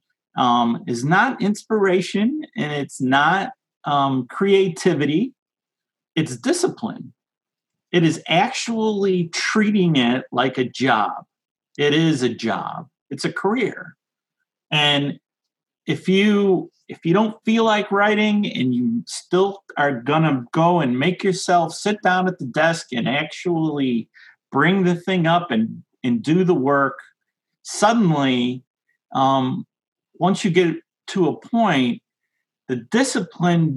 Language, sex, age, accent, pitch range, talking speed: English, male, 40-59, American, 140-190 Hz, 125 wpm